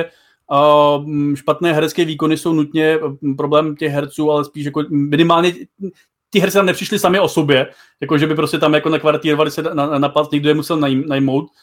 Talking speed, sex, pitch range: 170 wpm, male, 140-160 Hz